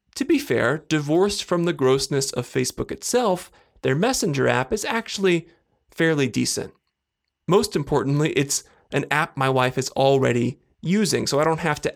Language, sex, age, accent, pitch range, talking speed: English, male, 30-49, American, 135-180 Hz, 160 wpm